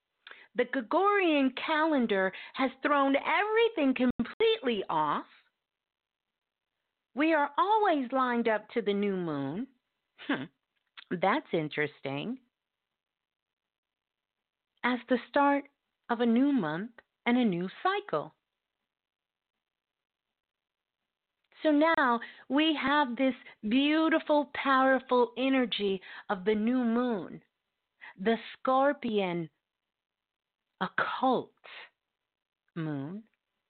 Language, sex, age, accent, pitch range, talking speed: English, female, 40-59, American, 210-305 Hz, 85 wpm